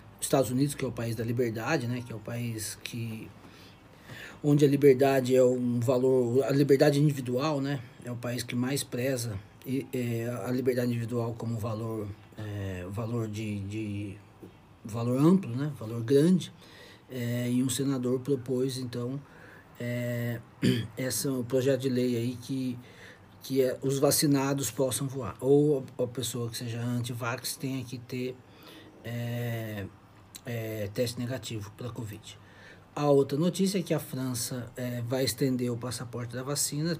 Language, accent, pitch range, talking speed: Portuguese, Brazilian, 115-140 Hz, 150 wpm